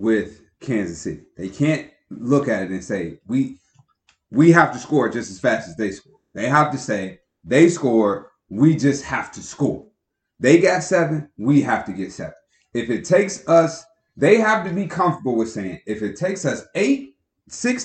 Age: 30-49